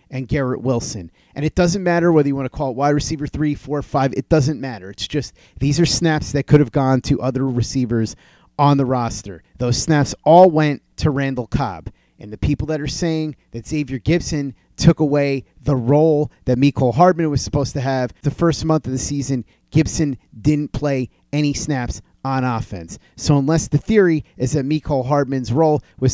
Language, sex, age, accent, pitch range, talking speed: English, male, 30-49, American, 130-155 Hz, 195 wpm